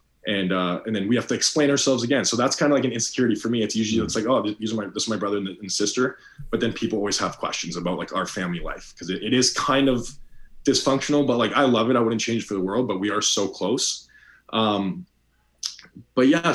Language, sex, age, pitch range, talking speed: English, male, 20-39, 90-120 Hz, 260 wpm